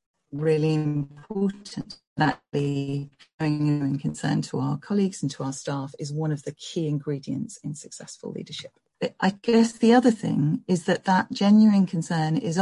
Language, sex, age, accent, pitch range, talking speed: English, female, 40-59, British, 145-175 Hz, 155 wpm